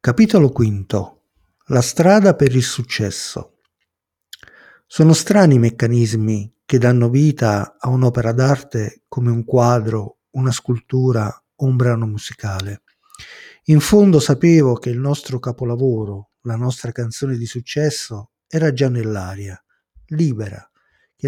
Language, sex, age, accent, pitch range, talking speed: Italian, male, 50-69, native, 115-145 Hz, 120 wpm